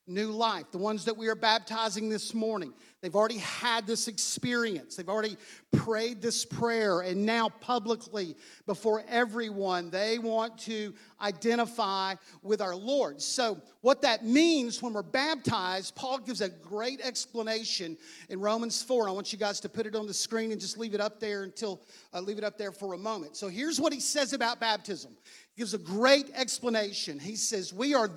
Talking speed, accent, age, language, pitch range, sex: 185 wpm, American, 40-59, English, 205-255 Hz, male